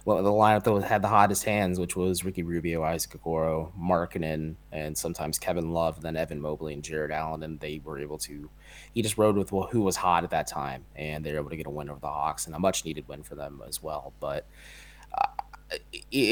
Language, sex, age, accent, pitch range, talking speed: English, male, 20-39, American, 80-95 Hz, 230 wpm